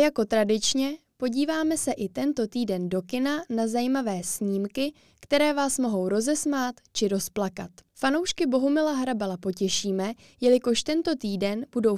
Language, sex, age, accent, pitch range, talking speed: Czech, female, 10-29, native, 200-280 Hz, 130 wpm